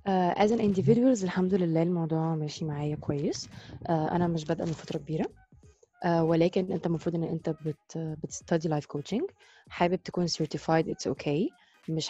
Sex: female